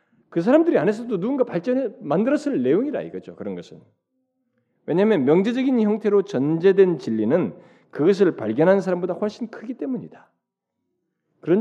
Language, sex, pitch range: Korean, male, 150-215 Hz